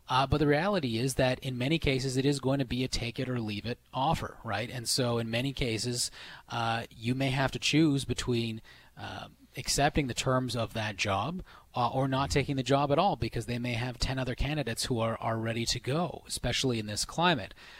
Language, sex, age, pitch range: English, male, 30-49, 115-145 Hz